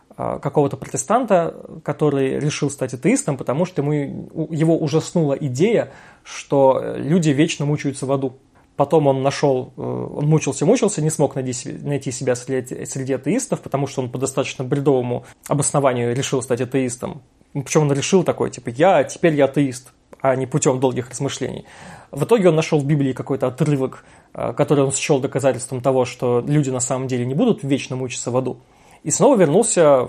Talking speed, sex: 160 wpm, male